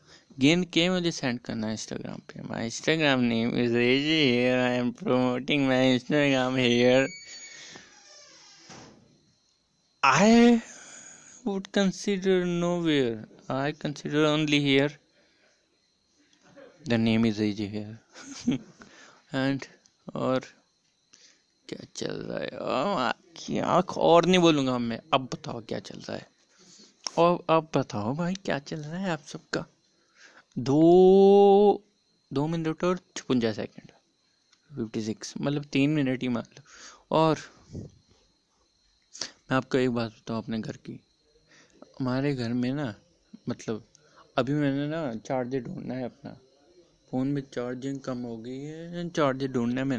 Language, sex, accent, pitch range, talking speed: Hindi, male, native, 125-180 Hz, 105 wpm